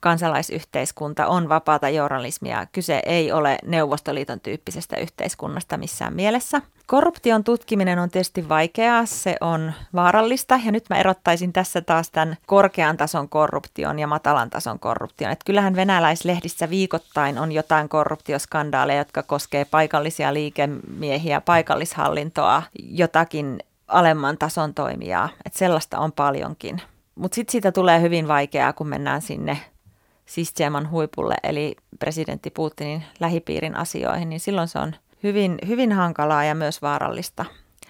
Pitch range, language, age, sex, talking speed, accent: 150-180 Hz, Finnish, 30-49, female, 125 wpm, native